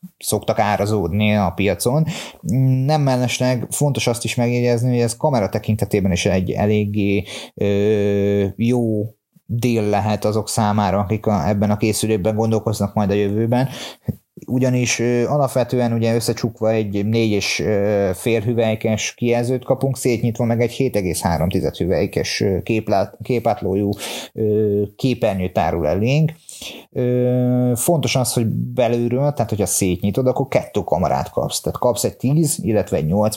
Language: Hungarian